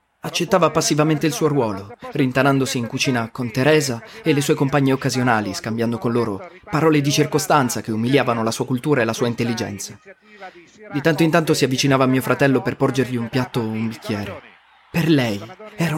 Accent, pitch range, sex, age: native, 120-155 Hz, male, 30-49